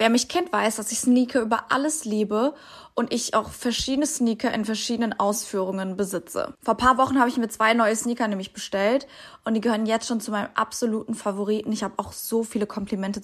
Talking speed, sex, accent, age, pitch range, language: 210 wpm, female, German, 20-39, 215-260 Hz, German